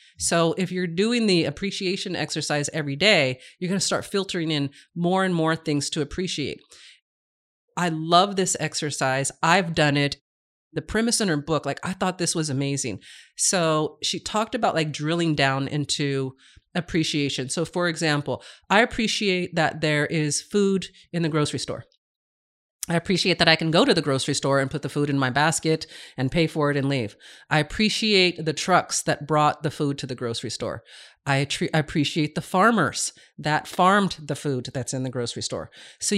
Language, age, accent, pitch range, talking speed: English, 40-59, American, 145-185 Hz, 185 wpm